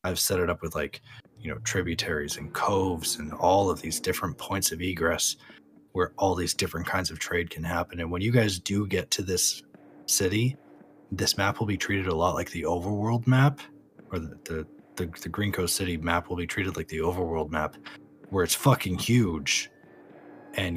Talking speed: 195 wpm